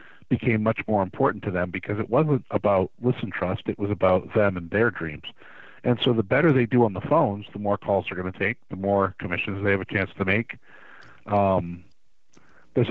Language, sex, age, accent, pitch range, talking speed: English, male, 50-69, American, 100-120 Hz, 215 wpm